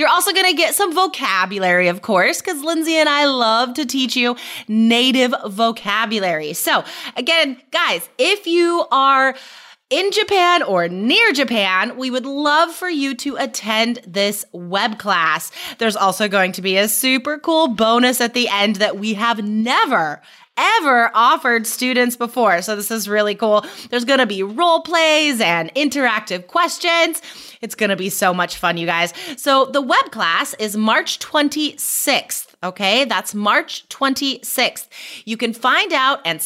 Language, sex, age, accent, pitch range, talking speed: English, female, 20-39, American, 215-295 Hz, 165 wpm